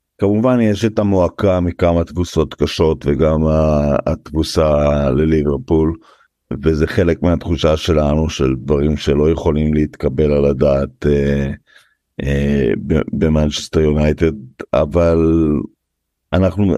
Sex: male